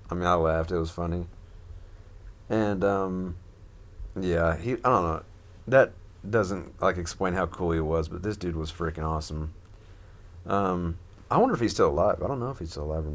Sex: male